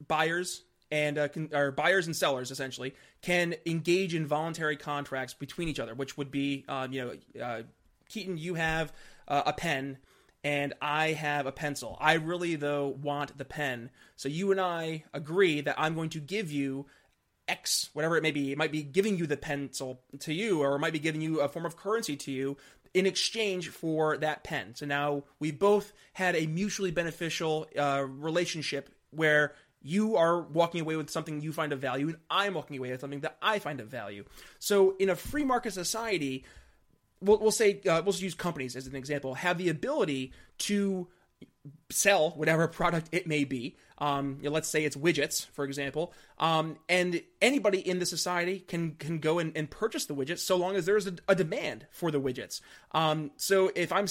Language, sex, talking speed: English, male, 200 wpm